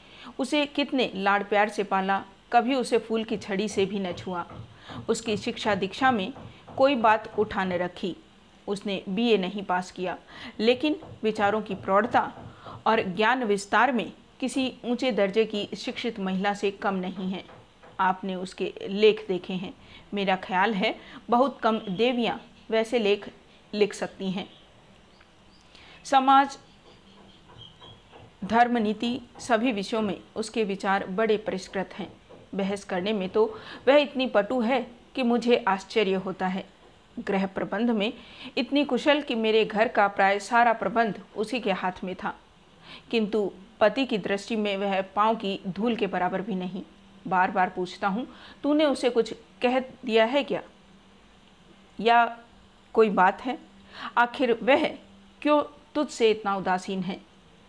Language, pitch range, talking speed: Hindi, 195-240 Hz, 140 wpm